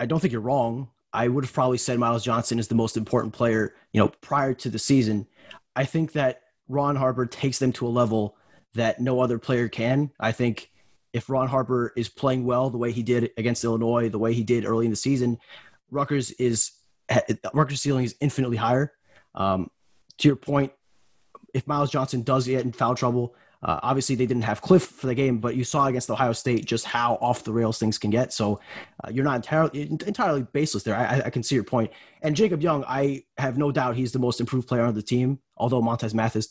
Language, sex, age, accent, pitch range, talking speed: English, male, 20-39, American, 115-135 Hz, 220 wpm